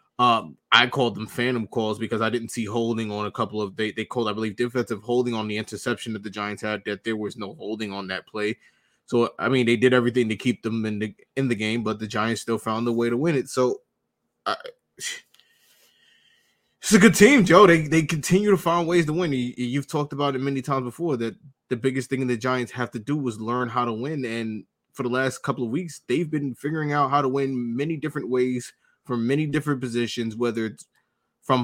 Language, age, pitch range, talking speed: English, 20-39, 115-140 Hz, 235 wpm